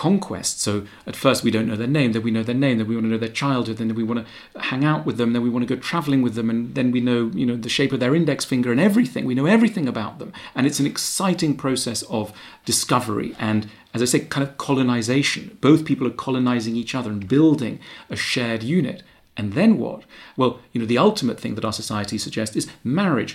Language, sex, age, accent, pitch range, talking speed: English, male, 40-59, British, 115-140 Hz, 245 wpm